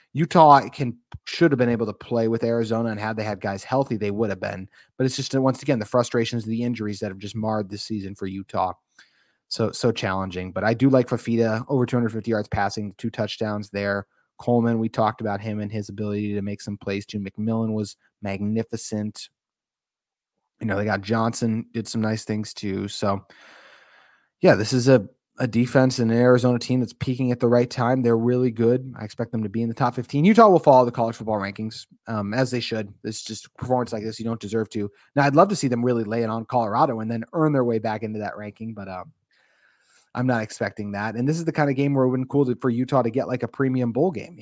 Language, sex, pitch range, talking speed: English, male, 105-125 Hz, 240 wpm